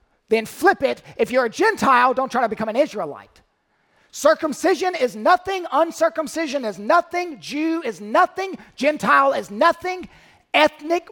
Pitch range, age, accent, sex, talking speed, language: 200-290 Hz, 40-59, American, male, 140 wpm, English